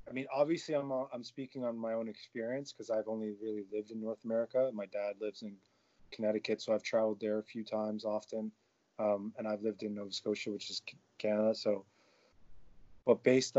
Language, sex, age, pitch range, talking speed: English, male, 20-39, 110-130 Hz, 195 wpm